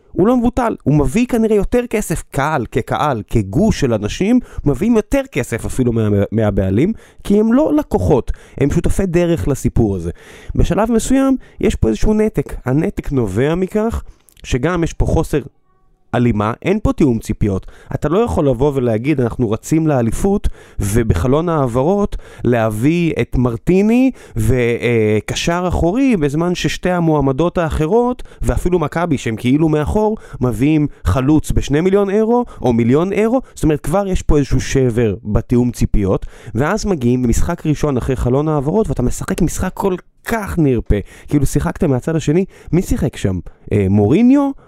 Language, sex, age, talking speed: Hebrew, male, 20-39, 145 wpm